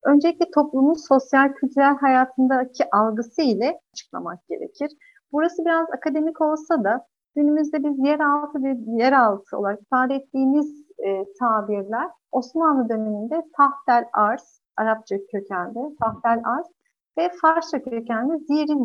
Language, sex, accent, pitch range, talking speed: Turkish, female, native, 225-300 Hz, 120 wpm